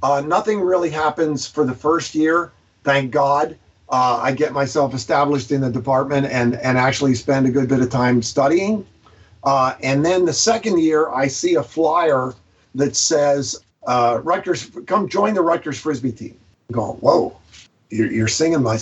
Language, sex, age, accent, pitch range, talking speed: English, male, 50-69, American, 115-145 Hz, 175 wpm